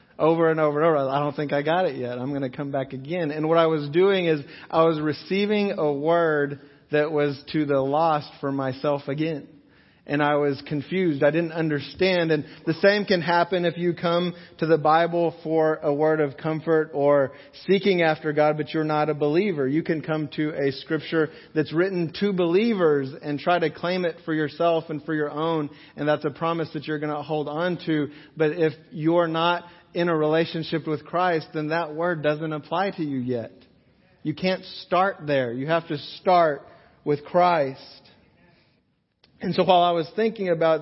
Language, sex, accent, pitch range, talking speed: English, male, American, 150-175 Hz, 200 wpm